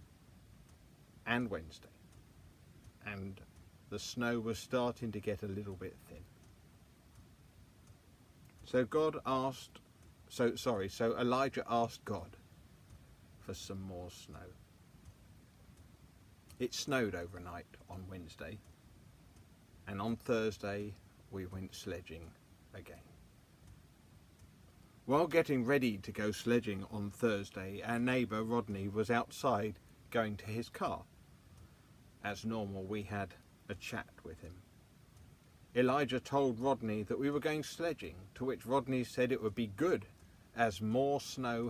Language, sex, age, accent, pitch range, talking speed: English, male, 50-69, British, 95-125 Hz, 120 wpm